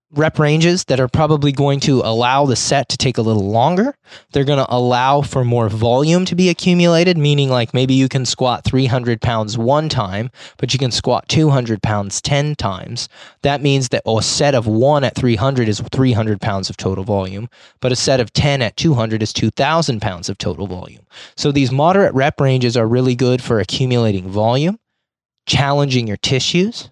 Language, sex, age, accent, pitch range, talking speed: English, male, 20-39, American, 110-140 Hz, 190 wpm